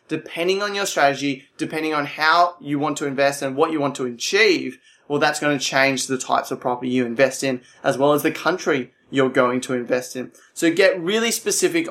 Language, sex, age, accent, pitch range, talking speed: English, male, 20-39, Australian, 140-165 Hz, 215 wpm